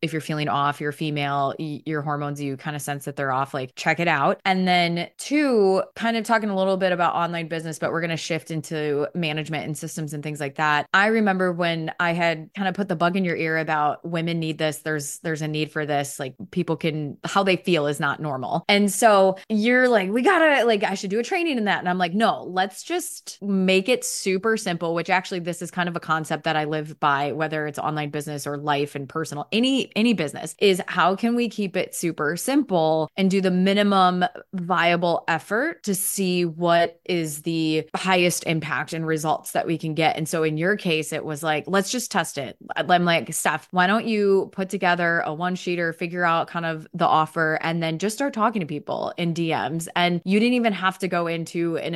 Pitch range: 155-190 Hz